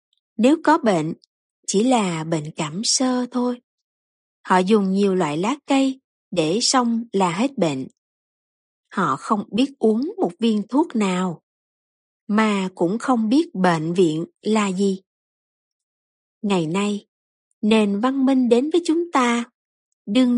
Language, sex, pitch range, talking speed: Vietnamese, female, 190-260 Hz, 135 wpm